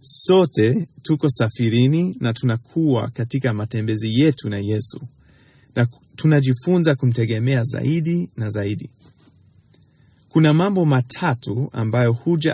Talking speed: 100 wpm